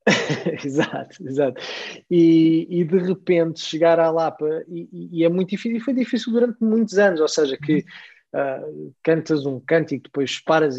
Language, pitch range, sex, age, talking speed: Portuguese, 150-190 Hz, male, 20-39, 165 wpm